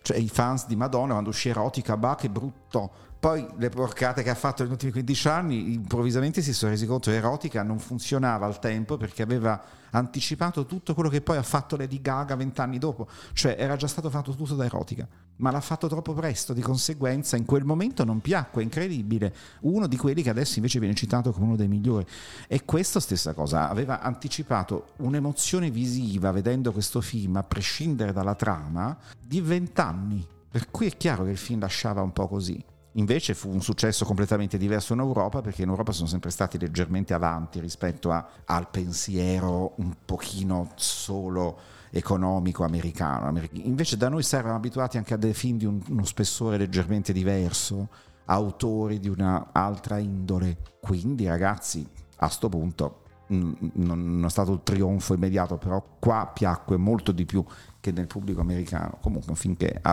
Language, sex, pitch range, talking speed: Italian, male, 90-130 Hz, 175 wpm